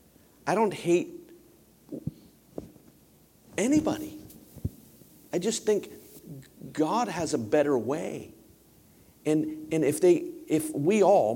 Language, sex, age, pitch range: English, male, 50-69, 115-165 Hz